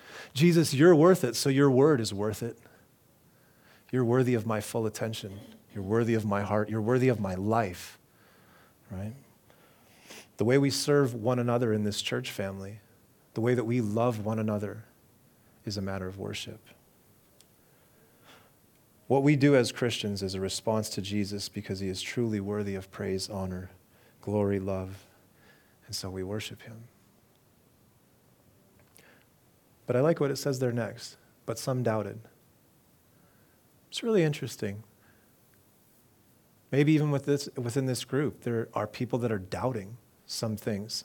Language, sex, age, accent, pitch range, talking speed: English, male, 30-49, American, 105-135 Hz, 150 wpm